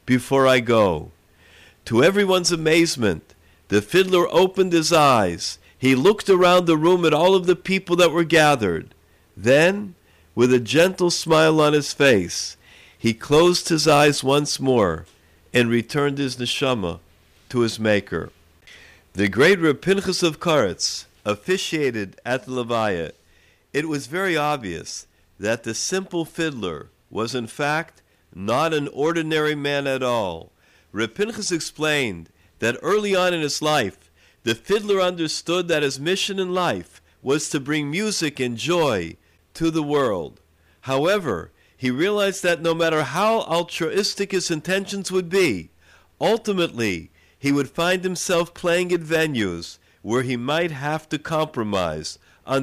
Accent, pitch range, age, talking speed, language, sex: American, 110-175 Hz, 50-69, 140 wpm, English, male